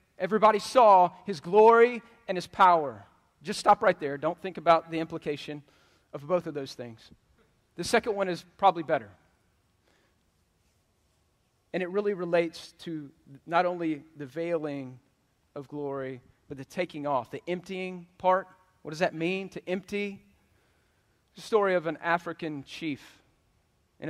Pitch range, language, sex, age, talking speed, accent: 140-180 Hz, English, male, 40-59, 145 wpm, American